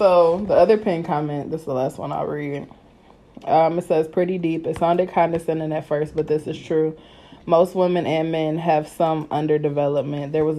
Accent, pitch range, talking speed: American, 150-165 Hz, 200 wpm